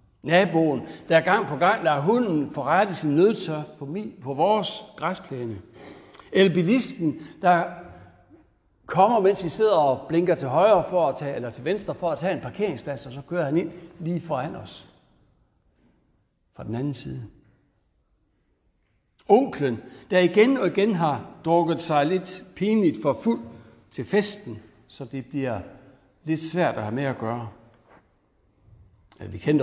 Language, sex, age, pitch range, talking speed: Danish, male, 60-79, 115-175 Hz, 150 wpm